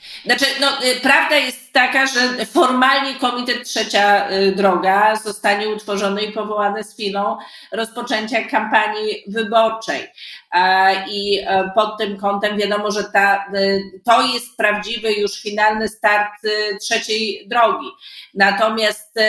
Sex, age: female, 40-59